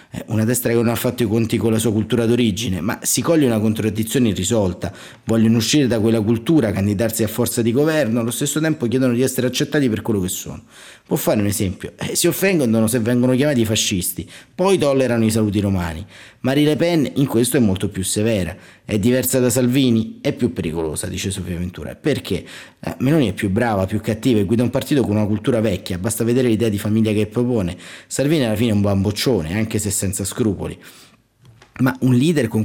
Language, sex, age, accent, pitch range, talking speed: Italian, male, 30-49, native, 100-125 Hz, 200 wpm